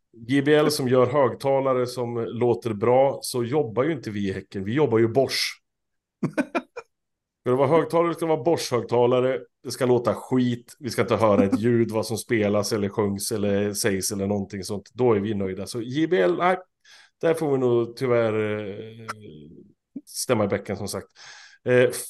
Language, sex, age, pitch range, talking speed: Swedish, male, 30-49, 105-150 Hz, 170 wpm